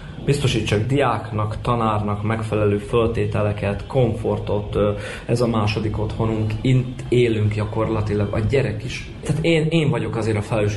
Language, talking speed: Hungarian, 130 wpm